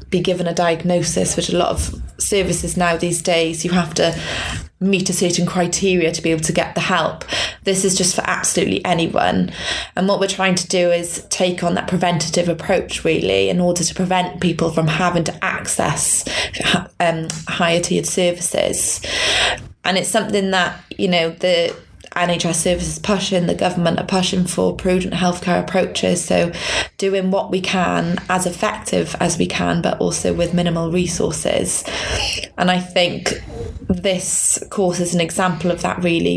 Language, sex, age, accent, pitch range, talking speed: English, female, 20-39, British, 170-185 Hz, 170 wpm